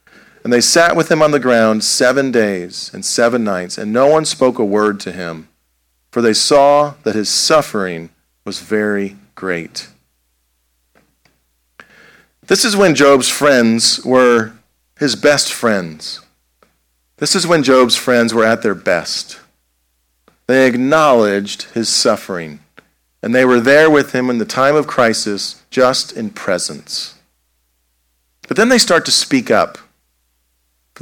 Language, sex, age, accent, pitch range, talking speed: English, male, 40-59, American, 90-140 Hz, 145 wpm